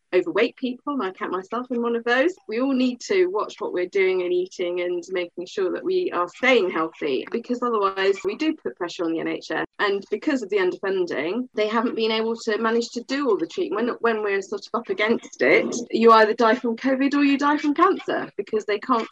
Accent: British